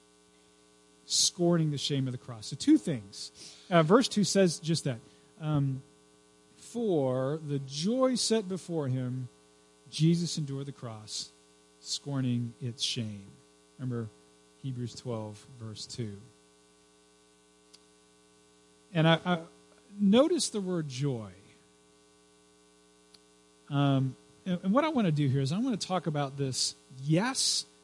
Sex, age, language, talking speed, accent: male, 40-59, English, 125 wpm, American